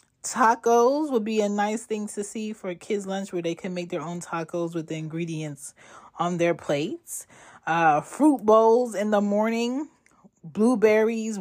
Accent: American